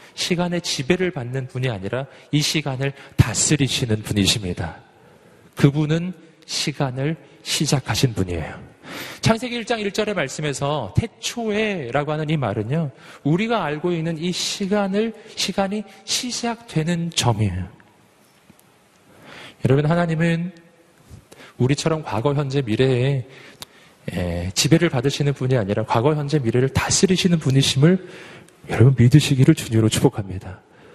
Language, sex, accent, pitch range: Korean, male, native, 120-170 Hz